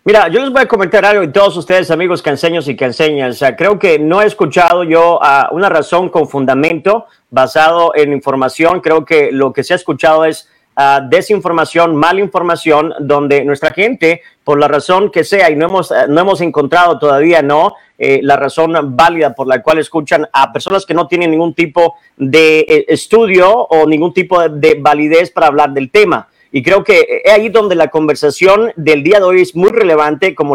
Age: 40-59